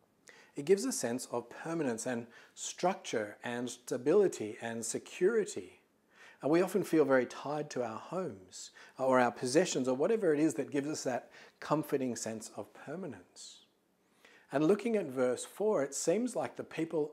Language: English